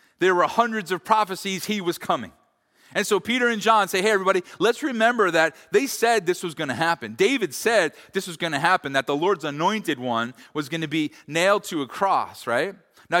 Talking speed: 220 wpm